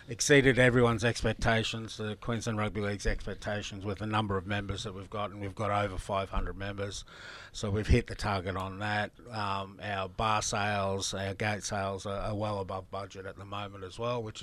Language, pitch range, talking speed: English, 105-120 Hz, 195 wpm